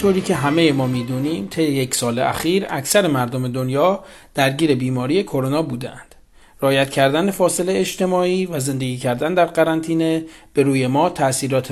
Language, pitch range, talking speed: Persian, 125-165 Hz, 150 wpm